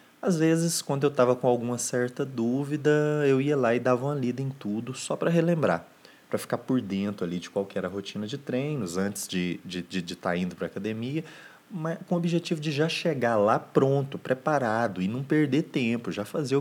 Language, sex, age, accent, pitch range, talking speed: Portuguese, male, 20-39, Brazilian, 95-140 Hz, 210 wpm